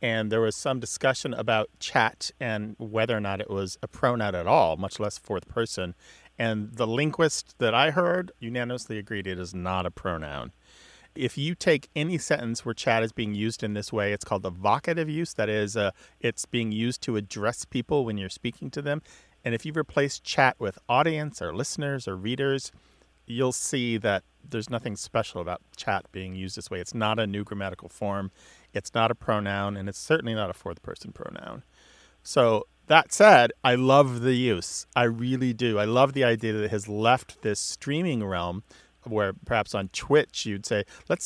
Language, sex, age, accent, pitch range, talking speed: English, male, 40-59, American, 100-130 Hz, 195 wpm